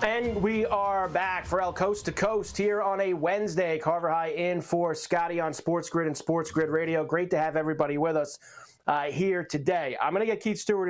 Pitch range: 150-185 Hz